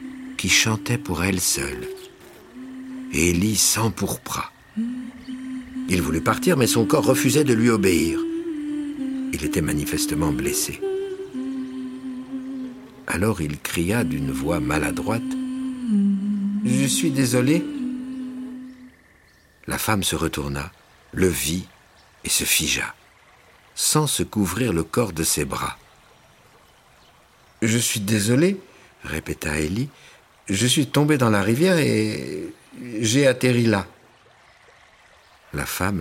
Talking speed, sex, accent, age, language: 115 wpm, male, French, 60-79, French